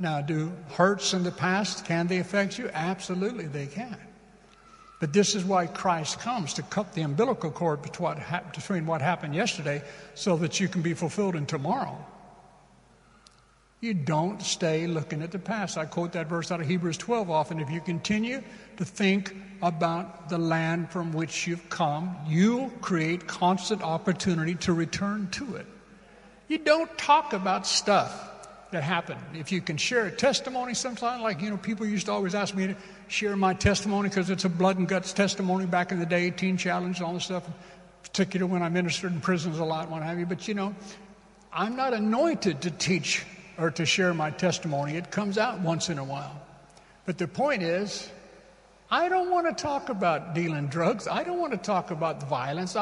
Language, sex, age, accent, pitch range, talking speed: English, male, 60-79, American, 170-205 Hz, 190 wpm